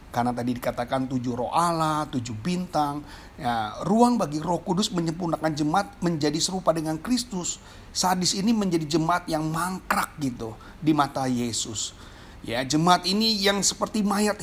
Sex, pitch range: male, 145-210 Hz